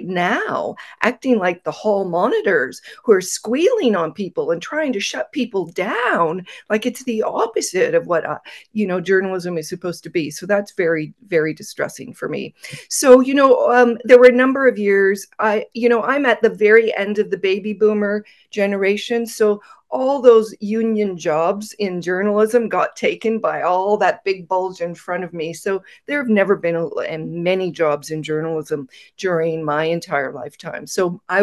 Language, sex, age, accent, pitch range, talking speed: English, female, 40-59, American, 165-215 Hz, 180 wpm